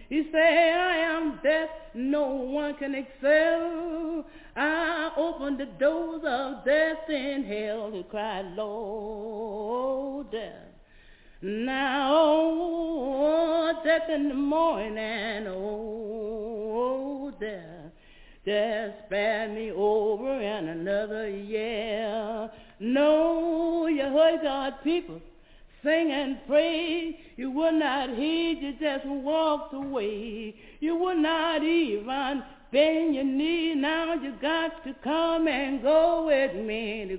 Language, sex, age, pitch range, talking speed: English, female, 40-59, 220-315 Hz, 115 wpm